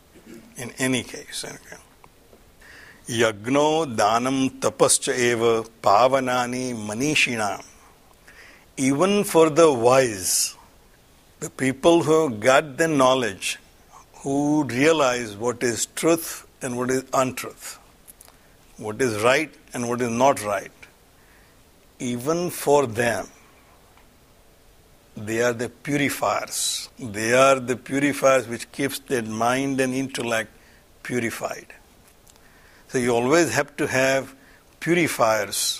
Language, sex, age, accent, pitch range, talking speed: English, male, 60-79, Indian, 120-145 Hz, 95 wpm